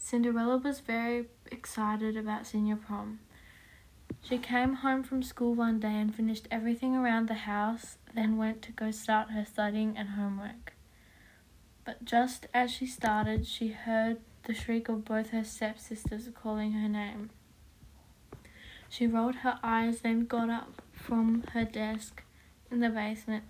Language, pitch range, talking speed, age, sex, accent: English, 215-235 Hz, 150 wpm, 10-29, female, Australian